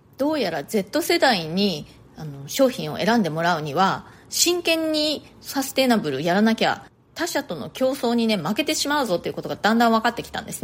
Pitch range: 195-285 Hz